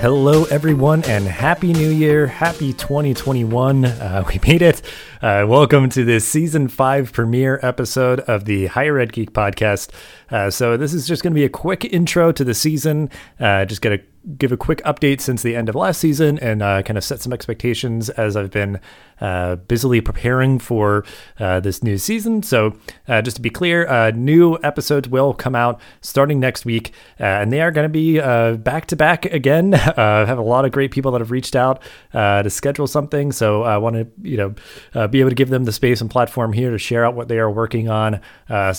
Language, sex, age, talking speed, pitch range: English, male, 30-49, 215 wpm, 110-145 Hz